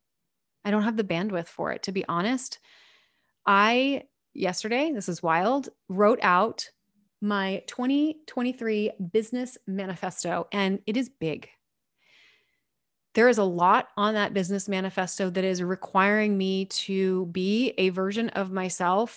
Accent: American